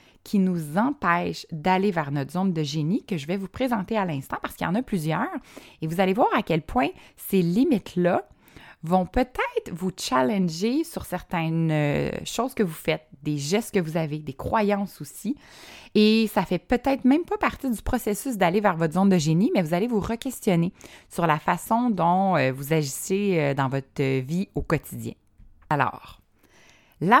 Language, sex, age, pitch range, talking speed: French, female, 20-39, 165-210 Hz, 180 wpm